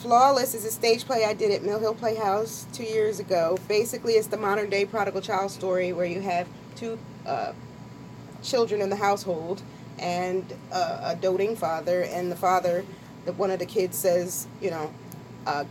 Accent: American